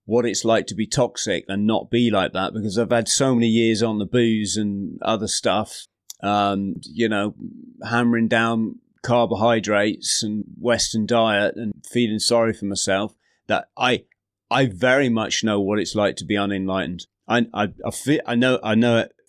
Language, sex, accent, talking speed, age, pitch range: English, male, British, 180 wpm, 30-49, 105-125 Hz